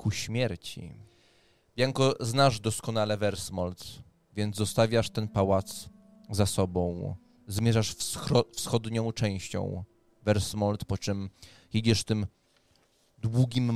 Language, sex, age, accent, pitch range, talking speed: English, male, 20-39, Polish, 95-115 Hz, 95 wpm